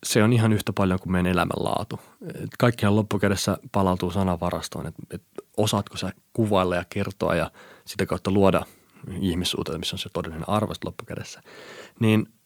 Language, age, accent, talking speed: Finnish, 30-49, native, 150 wpm